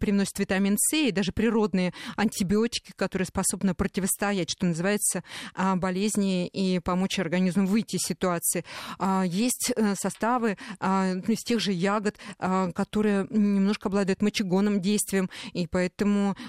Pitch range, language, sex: 195-240 Hz, Russian, female